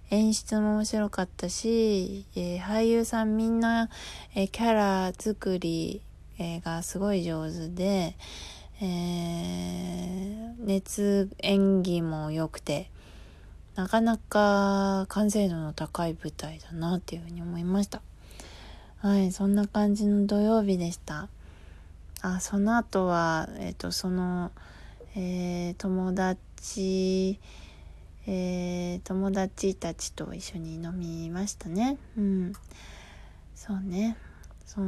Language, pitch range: Japanese, 165-205 Hz